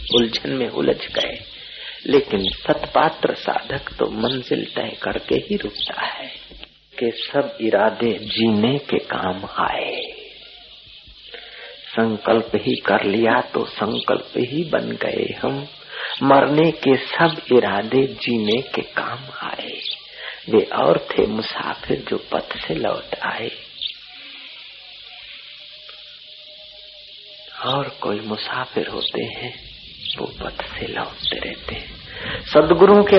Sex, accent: male, native